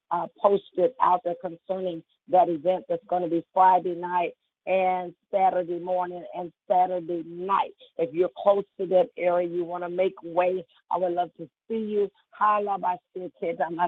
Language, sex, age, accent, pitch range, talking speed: English, female, 40-59, American, 175-195 Hz, 150 wpm